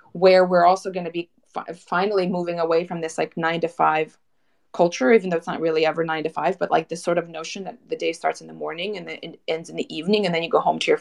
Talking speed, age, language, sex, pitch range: 280 wpm, 30-49, English, female, 155-190 Hz